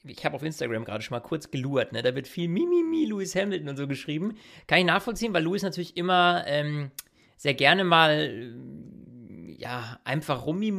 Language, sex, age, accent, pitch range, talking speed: German, male, 40-59, German, 135-175 Hz, 185 wpm